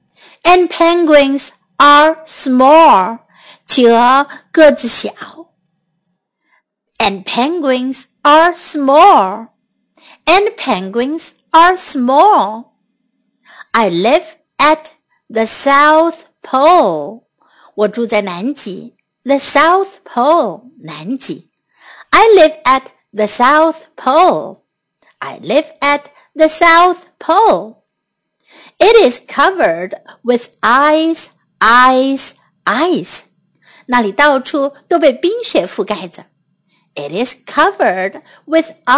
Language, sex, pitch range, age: Chinese, female, 235-330 Hz, 50-69